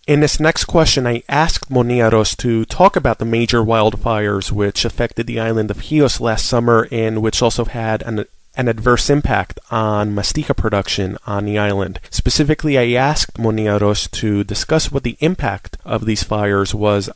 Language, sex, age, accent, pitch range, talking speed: English, male, 30-49, American, 105-135 Hz, 170 wpm